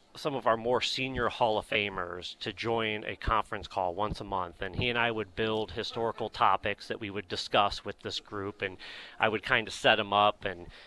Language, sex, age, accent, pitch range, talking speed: English, male, 30-49, American, 95-115 Hz, 220 wpm